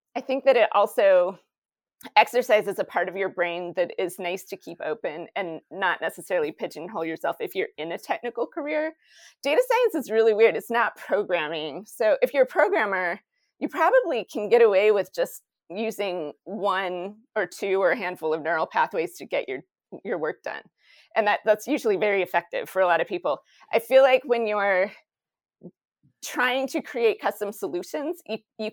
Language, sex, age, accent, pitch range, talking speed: English, female, 30-49, American, 195-275 Hz, 180 wpm